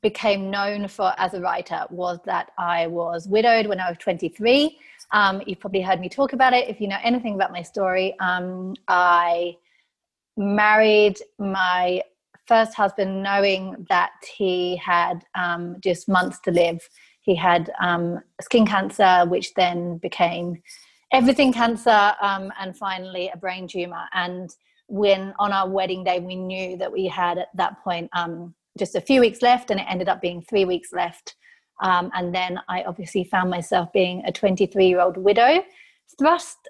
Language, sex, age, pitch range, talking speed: English, female, 30-49, 180-220 Hz, 165 wpm